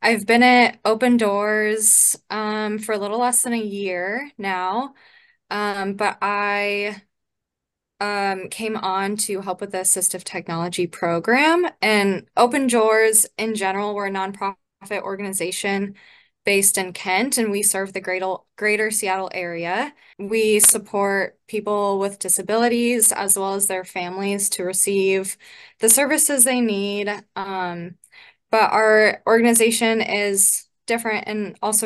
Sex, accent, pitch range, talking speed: female, American, 195-225 Hz, 130 wpm